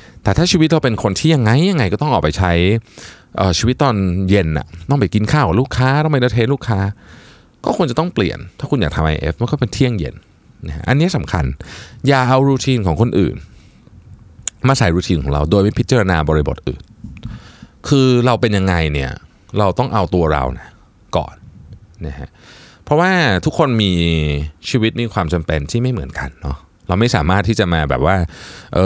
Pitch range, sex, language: 85-120 Hz, male, Thai